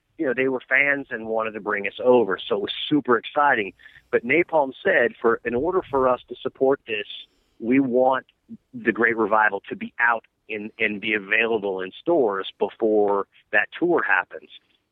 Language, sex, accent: English, male, American